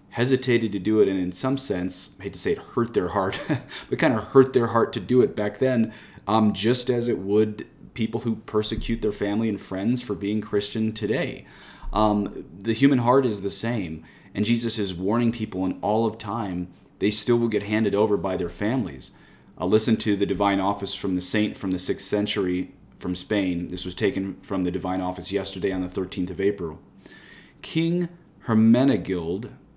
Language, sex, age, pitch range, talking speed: English, male, 30-49, 95-120 Hz, 200 wpm